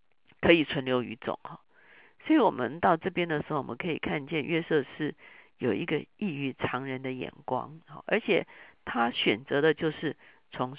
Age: 50-69